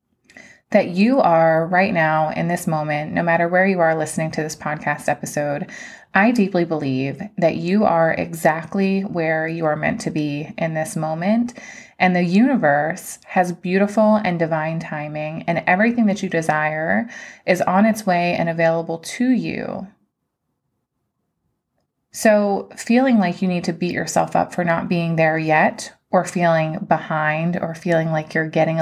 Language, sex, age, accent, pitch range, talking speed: English, female, 20-39, American, 165-195 Hz, 160 wpm